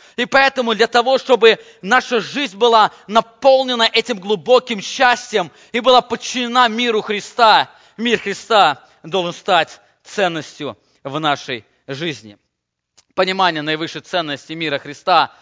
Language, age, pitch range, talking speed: English, 20-39, 175-230 Hz, 115 wpm